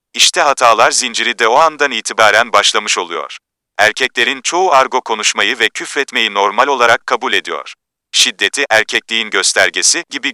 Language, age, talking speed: Turkish, 40-59, 135 wpm